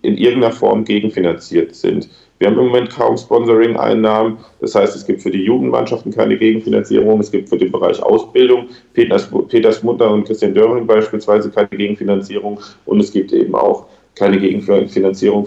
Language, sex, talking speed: German, male, 160 wpm